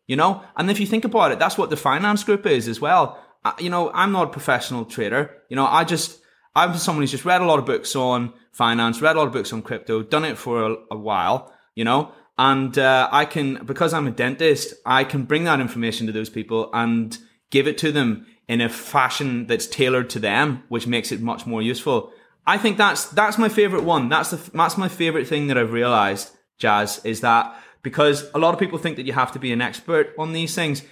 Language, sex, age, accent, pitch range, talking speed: English, male, 20-39, British, 115-160 Hz, 235 wpm